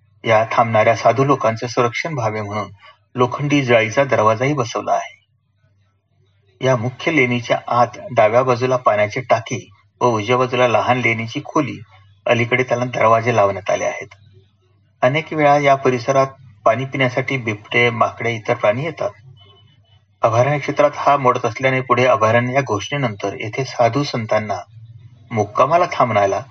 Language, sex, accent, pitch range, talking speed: Marathi, male, native, 105-135 Hz, 65 wpm